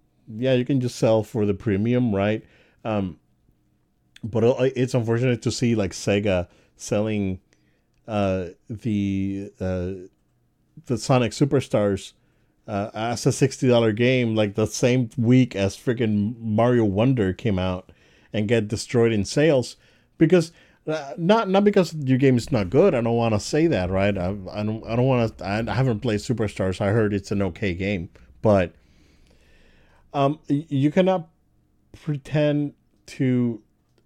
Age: 40-59